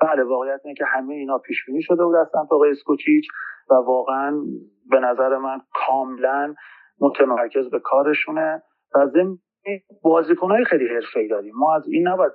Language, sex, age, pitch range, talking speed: Persian, male, 40-59, 135-215 Hz, 150 wpm